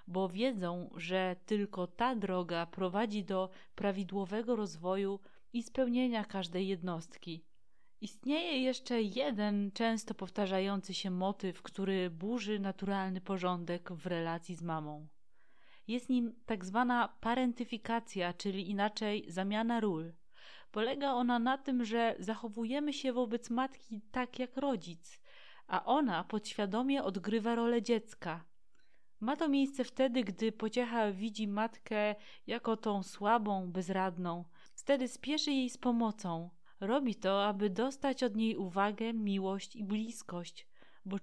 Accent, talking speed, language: native, 120 wpm, Polish